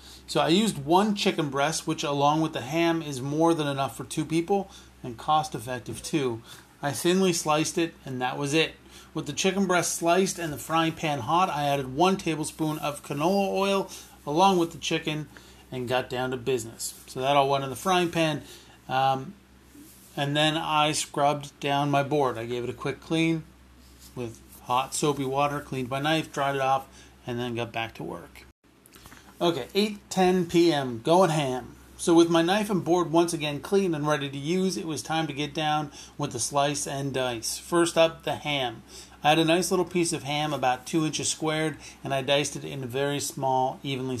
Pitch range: 135-165 Hz